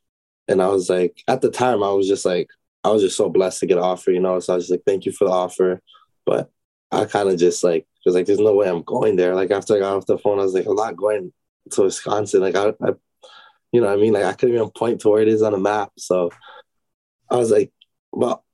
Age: 20-39